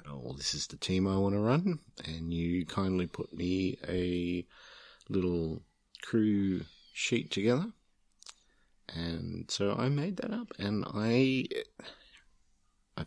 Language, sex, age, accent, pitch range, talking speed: English, male, 50-69, Australian, 80-105 Hz, 130 wpm